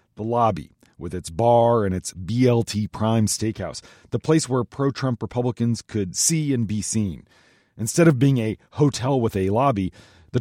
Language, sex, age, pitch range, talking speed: English, male, 30-49, 105-140 Hz, 165 wpm